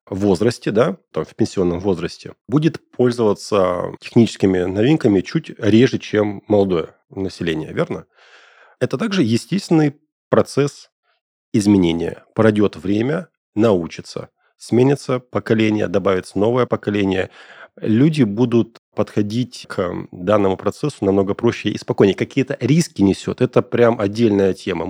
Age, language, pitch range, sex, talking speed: 30-49, Russian, 100-120 Hz, male, 110 wpm